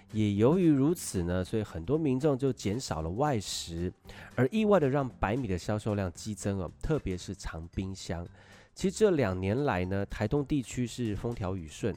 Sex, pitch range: male, 95-140 Hz